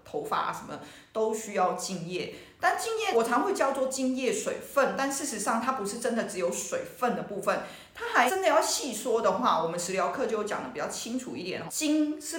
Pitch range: 195-265 Hz